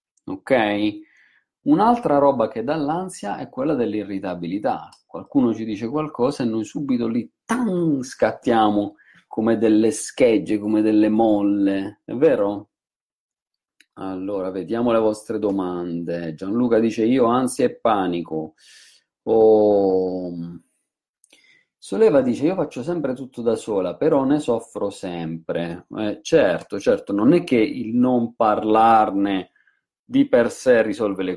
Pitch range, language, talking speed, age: 95-120 Hz, Italian, 120 wpm, 40-59